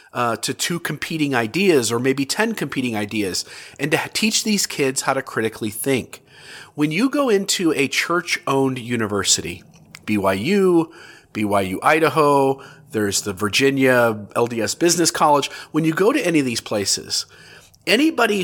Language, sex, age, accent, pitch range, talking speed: English, male, 40-59, American, 125-170 Hz, 140 wpm